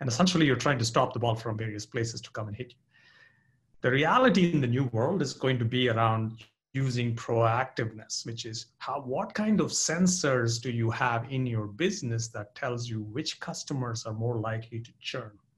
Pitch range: 115-135 Hz